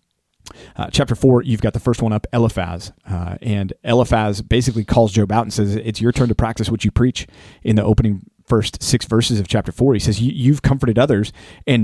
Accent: American